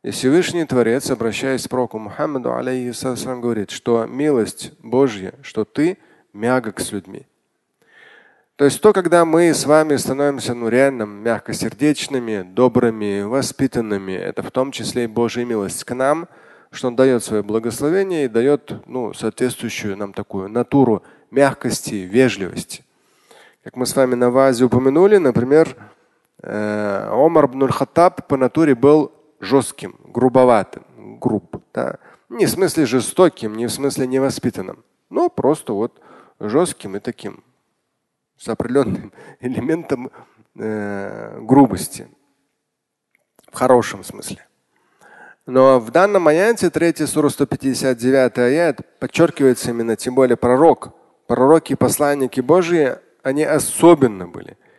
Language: Russian